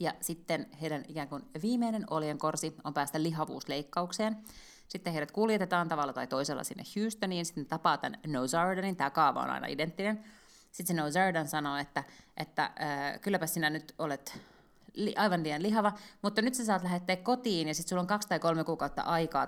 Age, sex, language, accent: 30-49, female, Finnish, native